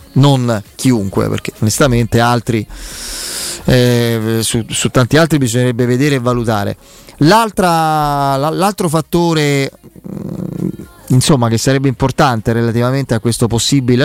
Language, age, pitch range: Italian, 30-49, 120-150 Hz